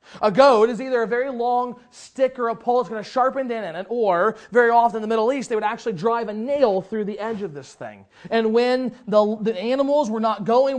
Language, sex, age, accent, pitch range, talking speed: English, male, 30-49, American, 200-245 Hz, 260 wpm